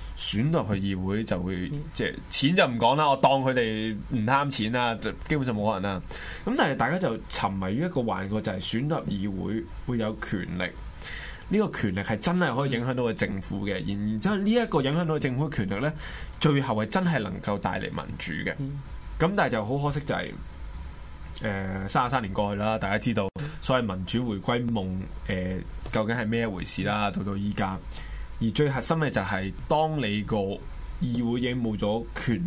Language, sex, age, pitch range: Chinese, male, 20-39, 100-135 Hz